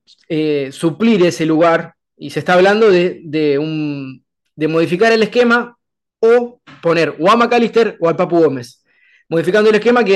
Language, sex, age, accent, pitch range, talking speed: Portuguese, male, 20-39, Argentinian, 150-185 Hz, 165 wpm